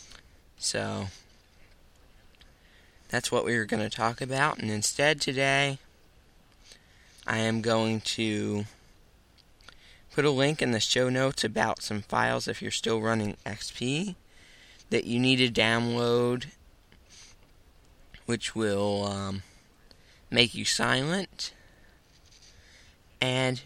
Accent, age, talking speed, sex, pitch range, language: American, 20-39, 110 wpm, male, 90-120 Hz, English